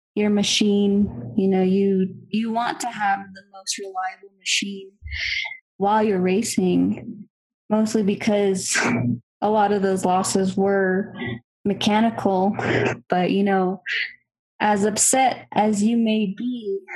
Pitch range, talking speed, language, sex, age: 190-220 Hz, 120 wpm, English, female, 20-39